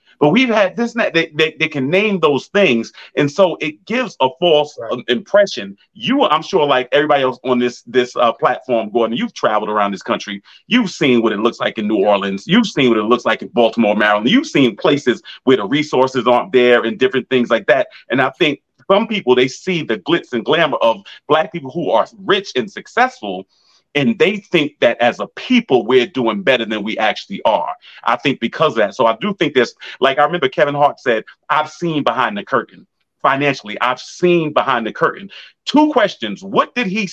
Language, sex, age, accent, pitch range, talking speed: English, male, 30-49, American, 125-195 Hz, 215 wpm